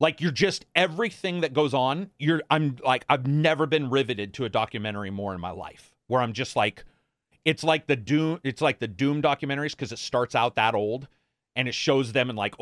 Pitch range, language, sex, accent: 115-145 Hz, English, male, American